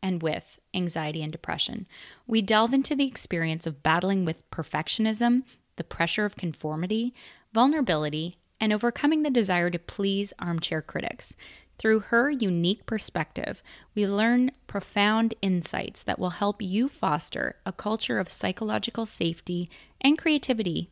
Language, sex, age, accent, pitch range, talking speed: English, female, 20-39, American, 170-225 Hz, 135 wpm